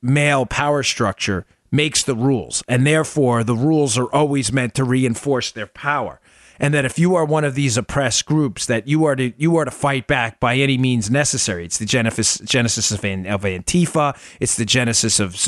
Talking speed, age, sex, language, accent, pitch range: 200 wpm, 30-49, male, English, American, 110-150 Hz